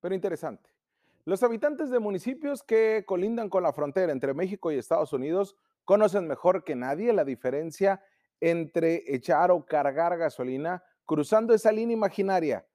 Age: 40-59